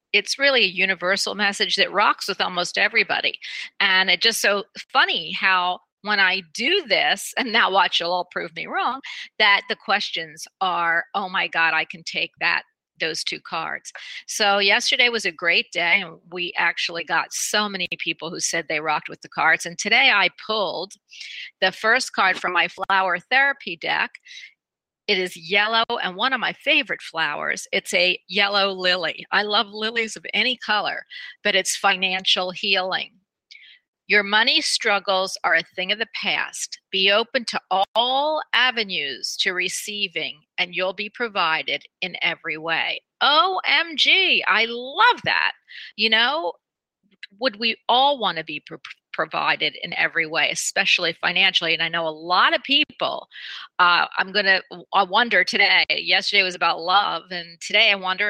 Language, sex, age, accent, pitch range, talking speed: English, female, 40-59, American, 180-225 Hz, 165 wpm